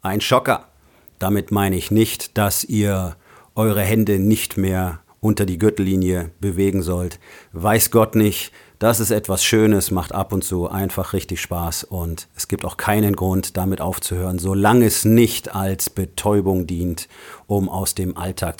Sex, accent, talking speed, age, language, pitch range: male, German, 160 wpm, 40-59, German, 95-110 Hz